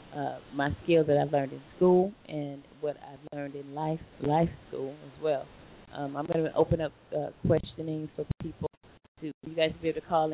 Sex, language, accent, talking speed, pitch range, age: female, English, American, 205 wpm, 145-170 Hz, 30-49